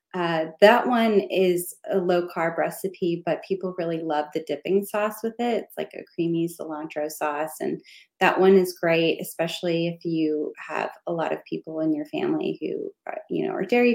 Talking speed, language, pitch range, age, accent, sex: 185 wpm, English, 170-225 Hz, 20-39, American, female